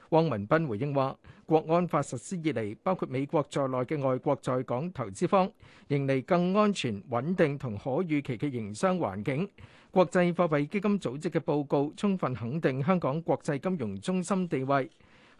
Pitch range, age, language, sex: 135-180 Hz, 50-69, Chinese, male